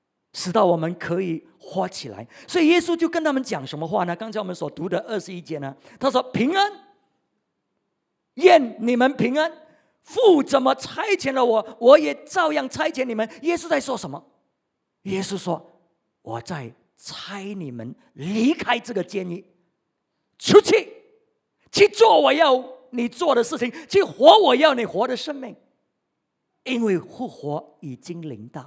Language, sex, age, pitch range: English, male, 50-69, 160-255 Hz